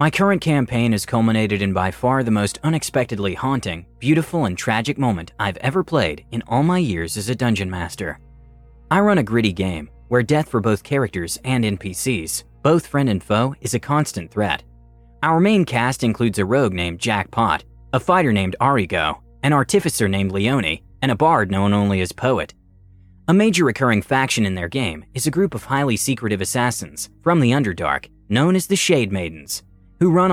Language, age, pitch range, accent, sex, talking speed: English, 30-49, 100-140 Hz, American, male, 185 wpm